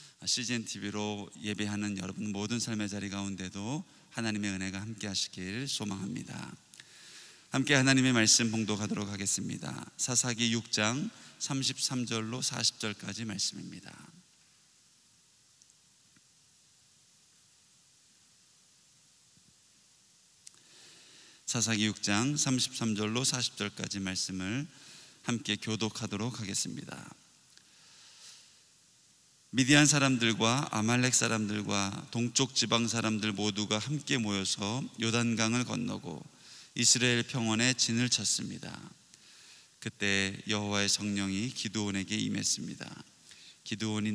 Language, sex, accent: Korean, male, native